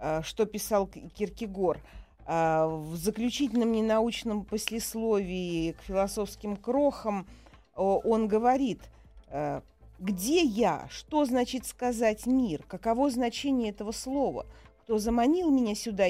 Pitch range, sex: 185-245 Hz, female